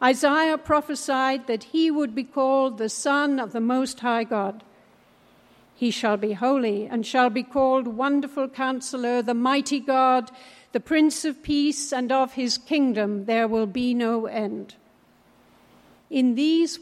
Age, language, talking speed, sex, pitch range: 60-79, English, 150 wpm, female, 230-275 Hz